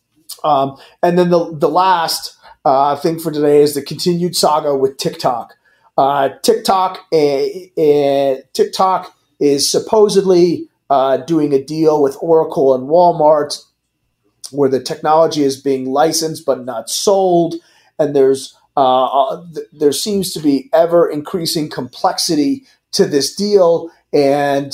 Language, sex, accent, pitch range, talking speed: English, male, American, 135-165 Hz, 130 wpm